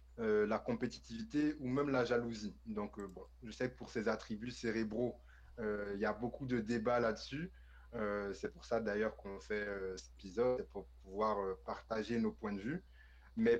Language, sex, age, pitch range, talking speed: French, male, 20-39, 100-130 Hz, 195 wpm